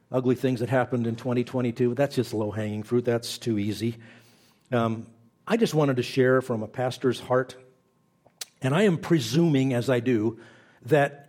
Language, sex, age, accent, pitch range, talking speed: English, male, 50-69, American, 125-150 Hz, 165 wpm